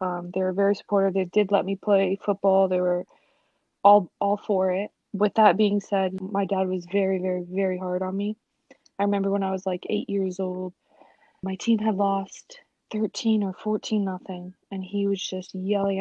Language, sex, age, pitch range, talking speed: English, female, 20-39, 190-210 Hz, 195 wpm